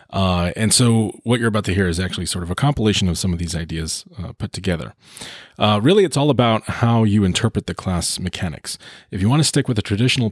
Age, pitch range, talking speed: 30-49, 95-115 Hz, 240 wpm